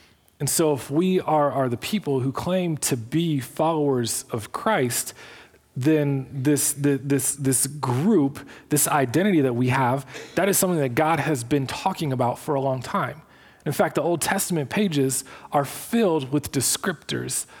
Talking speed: 165 wpm